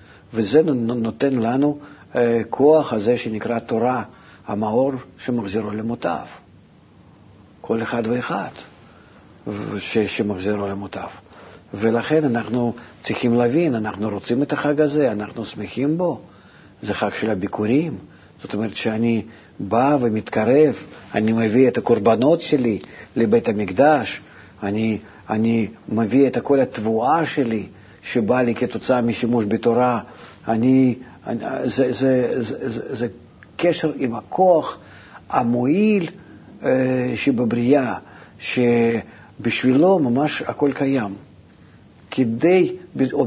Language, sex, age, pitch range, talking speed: Hebrew, male, 50-69, 110-140 Hz, 105 wpm